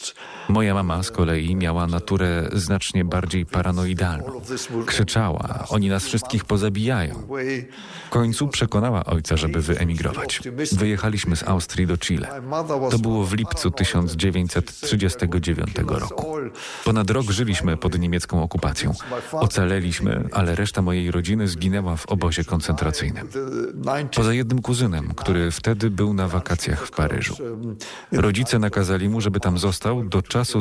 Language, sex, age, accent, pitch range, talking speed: Polish, male, 40-59, native, 85-115 Hz, 125 wpm